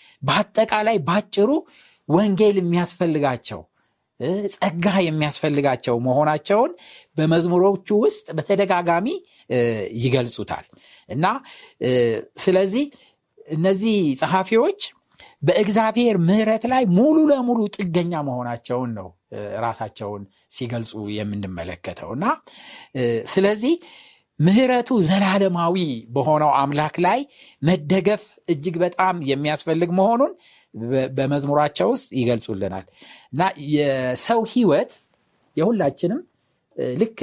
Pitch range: 135-210 Hz